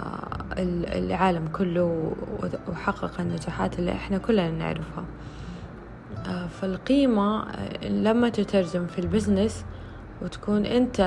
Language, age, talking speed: Arabic, 20-39, 80 wpm